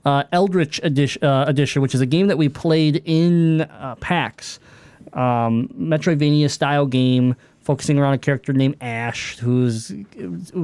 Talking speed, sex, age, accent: 150 wpm, male, 20-39, American